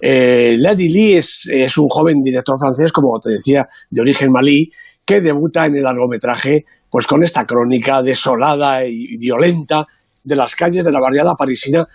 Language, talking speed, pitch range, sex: Spanish, 170 wpm, 130-170 Hz, male